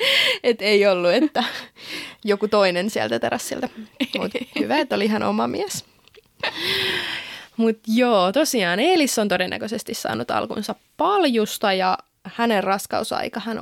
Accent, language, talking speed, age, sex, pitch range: native, Finnish, 115 wpm, 20-39, female, 215-265 Hz